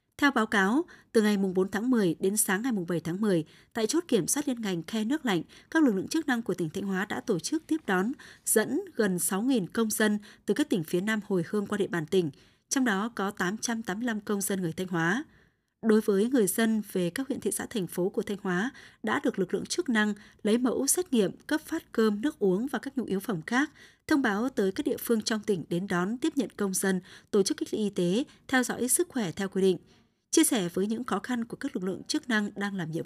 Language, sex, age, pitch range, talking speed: Vietnamese, female, 20-39, 190-245 Hz, 250 wpm